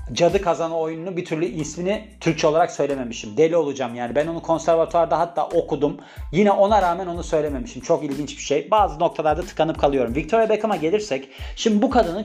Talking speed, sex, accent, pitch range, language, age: 175 wpm, male, native, 145-185 Hz, Turkish, 40-59